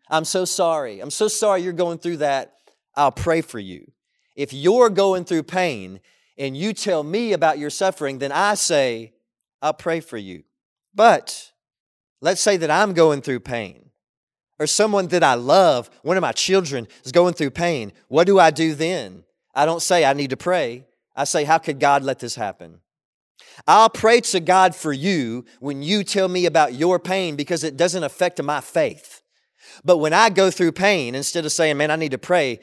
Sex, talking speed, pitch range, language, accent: male, 195 wpm, 135-175 Hz, English, American